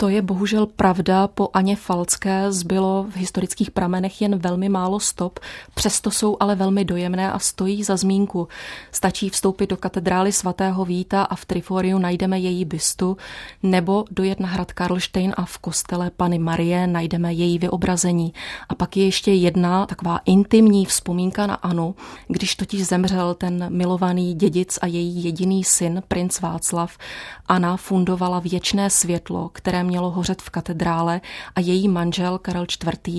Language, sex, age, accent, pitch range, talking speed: Czech, female, 30-49, native, 175-190 Hz, 155 wpm